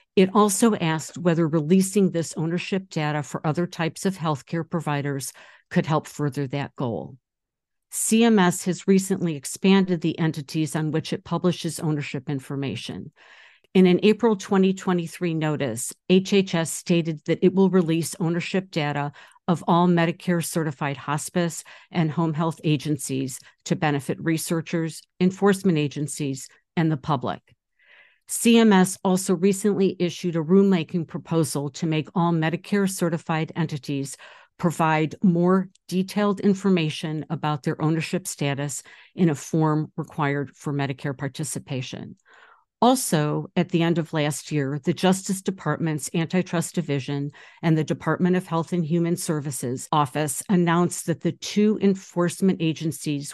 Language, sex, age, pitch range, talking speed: English, female, 50-69, 150-185 Hz, 130 wpm